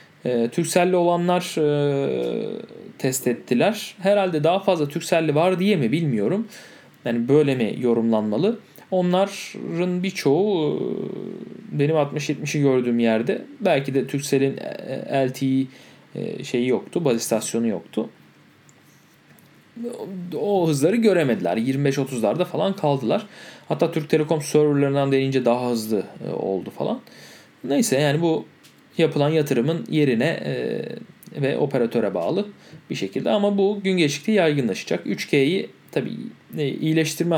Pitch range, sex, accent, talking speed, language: 135-185 Hz, male, native, 105 wpm, Turkish